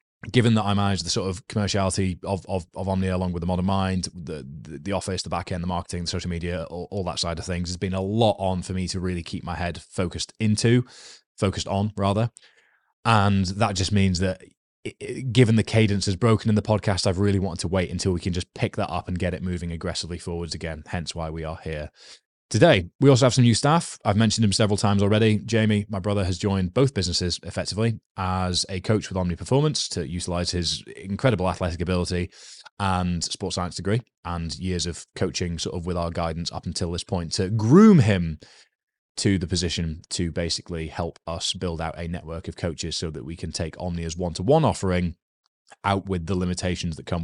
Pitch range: 85-105 Hz